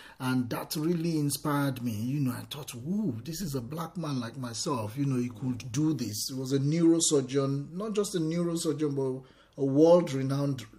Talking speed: 195 wpm